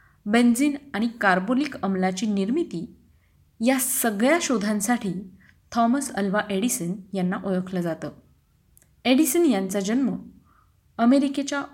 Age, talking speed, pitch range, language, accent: 30-49, 90 wpm, 190-250 Hz, Marathi, native